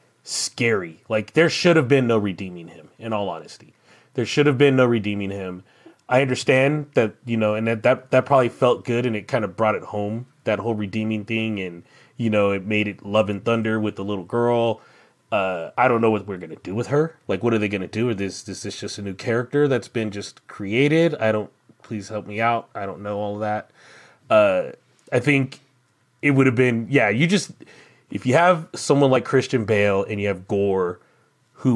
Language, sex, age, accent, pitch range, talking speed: English, male, 30-49, American, 100-125 Hz, 225 wpm